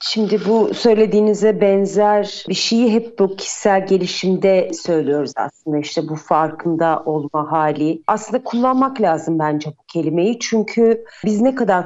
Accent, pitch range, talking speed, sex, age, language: native, 170-235 Hz, 135 wpm, female, 40-59, Turkish